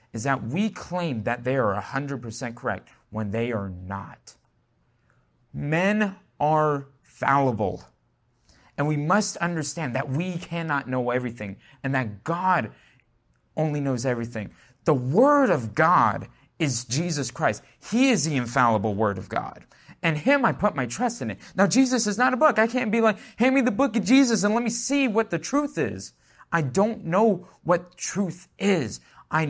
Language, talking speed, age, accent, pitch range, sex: English, 170 wpm, 30-49, American, 135-200 Hz, male